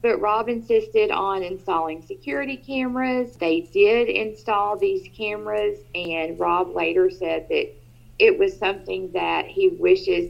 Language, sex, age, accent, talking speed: English, female, 40-59, American, 135 wpm